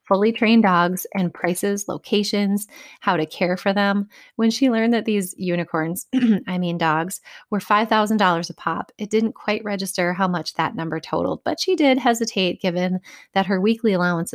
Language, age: English, 30-49